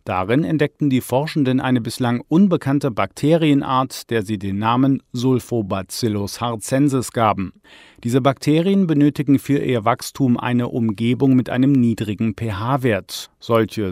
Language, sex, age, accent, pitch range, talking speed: German, male, 40-59, German, 110-140 Hz, 120 wpm